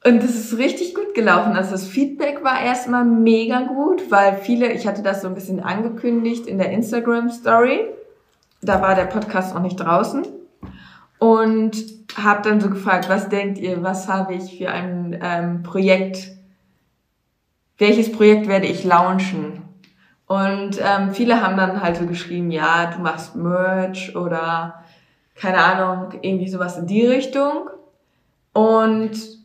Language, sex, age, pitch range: German, female, 20-39, 185-230 Hz